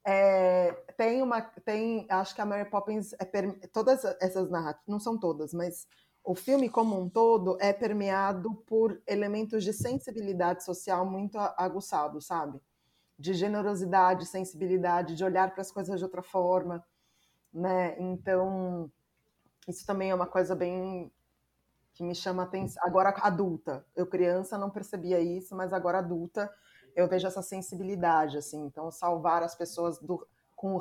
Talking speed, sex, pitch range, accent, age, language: 140 wpm, female, 175-200 Hz, Brazilian, 20-39, Portuguese